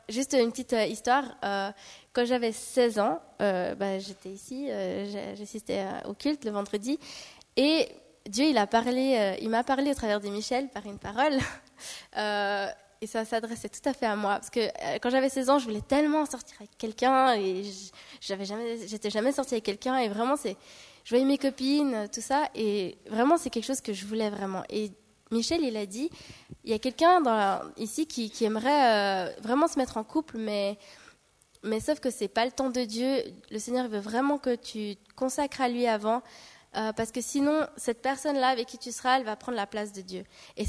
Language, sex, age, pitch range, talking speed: French, female, 10-29, 210-260 Hz, 205 wpm